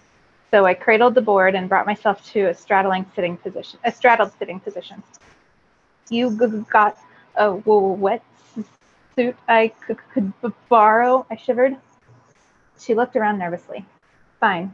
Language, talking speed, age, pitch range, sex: English, 155 wpm, 30-49, 195-235 Hz, female